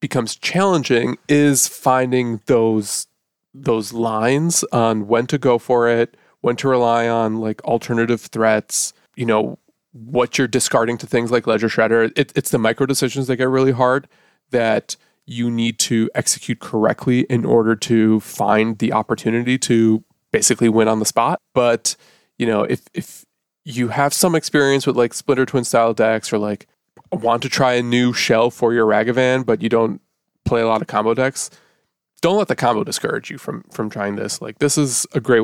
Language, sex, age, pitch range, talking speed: English, male, 20-39, 110-130 Hz, 180 wpm